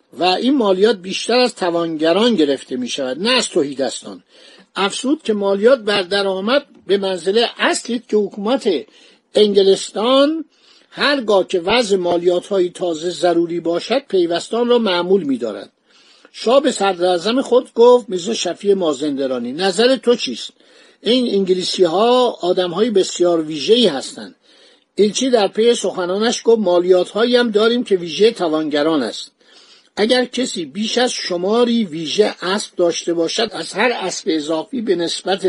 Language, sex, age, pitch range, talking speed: Persian, male, 60-79, 180-235 Hz, 140 wpm